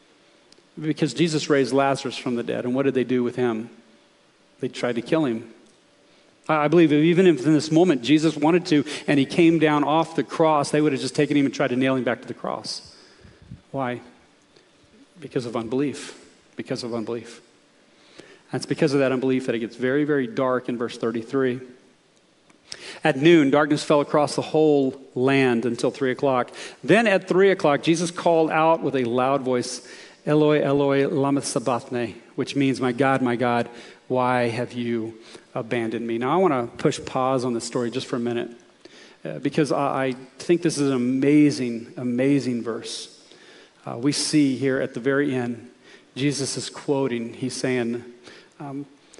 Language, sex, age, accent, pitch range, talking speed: English, male, 40-59, American, 120-145 Hz, 180 wpm